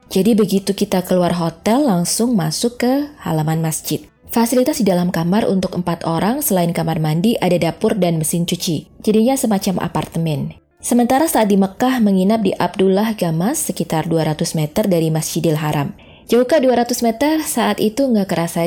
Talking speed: 160 wpm